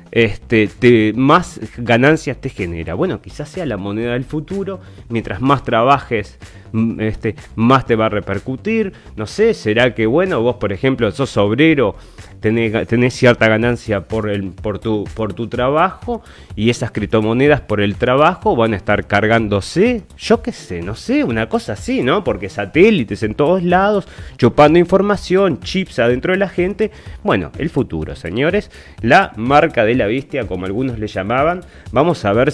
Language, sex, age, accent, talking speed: Spanish, male, 30-49, Argentinian, 160 wpm